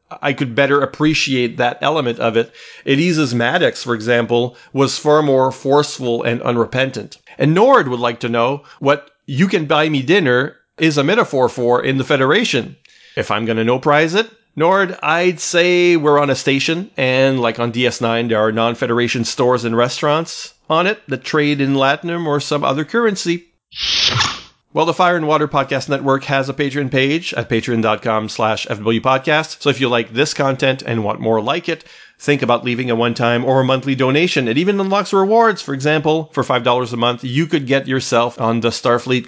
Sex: male